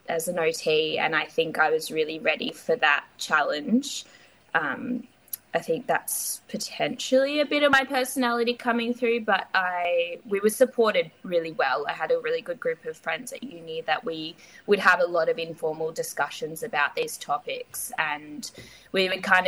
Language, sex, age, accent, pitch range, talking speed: English, female, 20-39, Australian, 190-270 Hz, 180 wpm